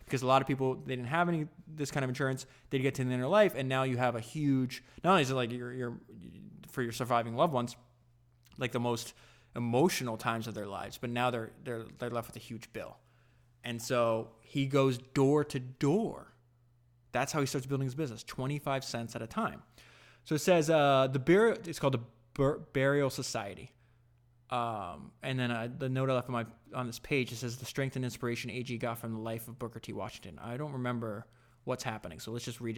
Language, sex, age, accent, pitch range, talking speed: English, male, 20-39, American, 120-140 Hz, 230 wpm